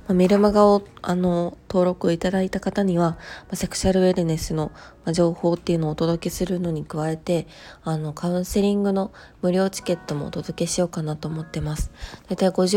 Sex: female